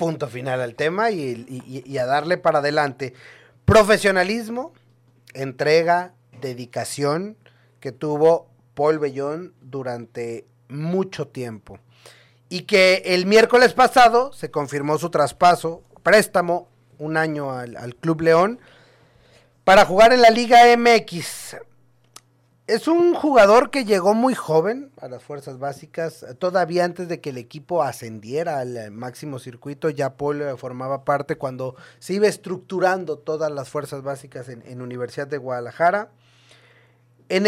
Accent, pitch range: Mexican, 130-185 Hz